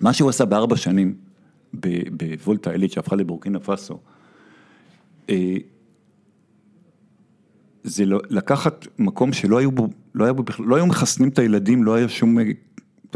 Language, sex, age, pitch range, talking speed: Hebrew, male, 50-69, 95-120 Hz, 130 wpm